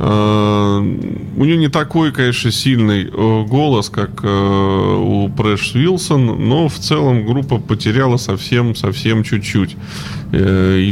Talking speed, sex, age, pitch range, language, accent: 105 wpm, male, 20-39, 100-120 Hz, Russian, native